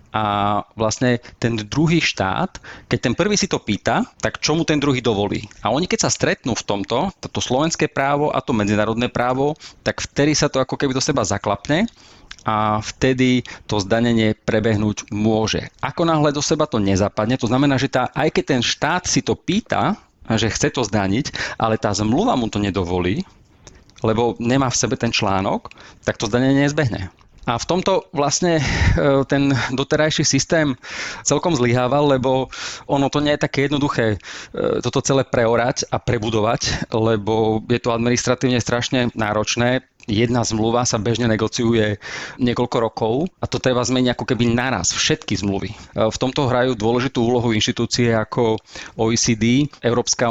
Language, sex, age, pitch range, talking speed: Slovak, male, 30-49, 110-135 Hz, 160 wpm